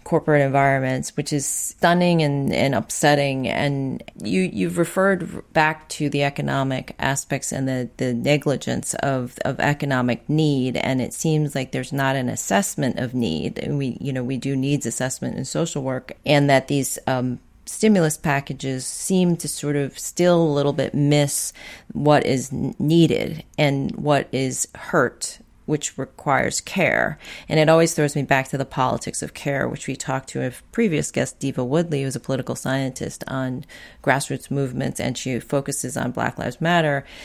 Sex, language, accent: female, English, American